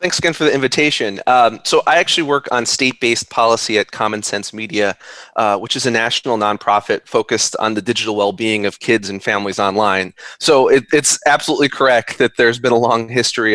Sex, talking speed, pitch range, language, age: male, 195 wpm, 105-125 Hz, English, 20-39